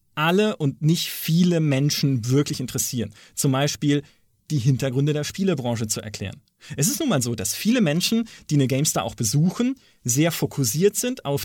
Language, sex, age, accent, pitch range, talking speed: German, male, 30-49, German, 130-180 Hz, 170 wpm